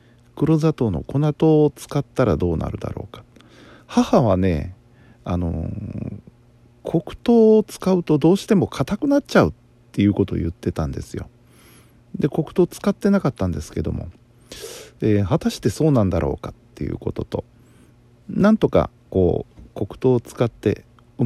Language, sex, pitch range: Japanese, male, 100-125 Hz